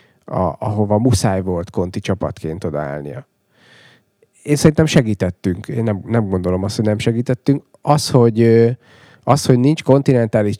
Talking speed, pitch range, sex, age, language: 135 wpm, 100-125 Hz, male, 30-49, Hungarian